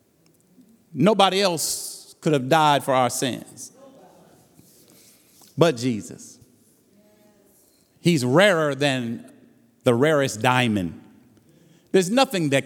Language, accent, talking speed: English, American, 90 wpm